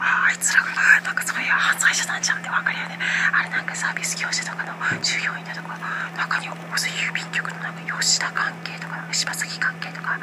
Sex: female